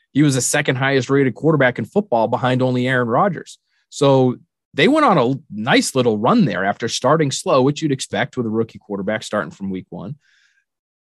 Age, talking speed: 30-49, 185 wpm